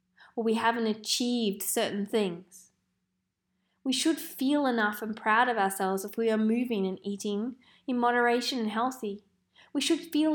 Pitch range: 200-250 Hz